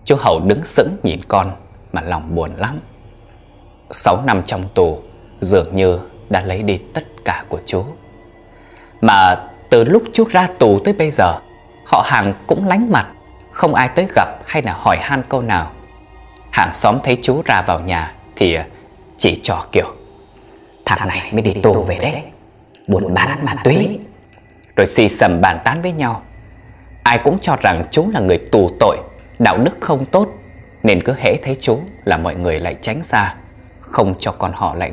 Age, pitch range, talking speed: 20-39, 95-125 Hz, 180 wpm